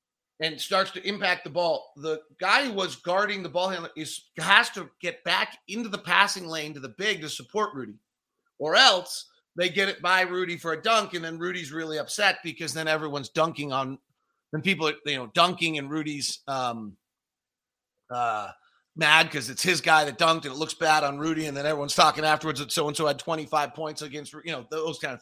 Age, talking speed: 30-49, 215 wpm